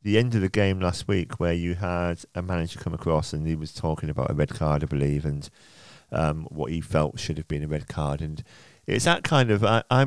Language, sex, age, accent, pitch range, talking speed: English, male, 40-59, British, 85-115 Hz, 245 wpm